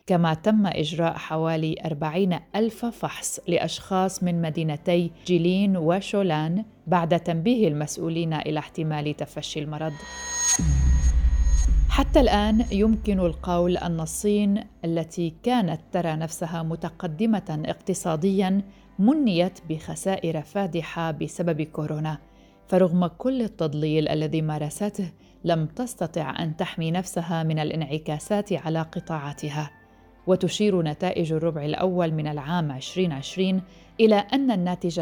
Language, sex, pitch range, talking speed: Arabic, female, 155-195 Hz, 105 wpm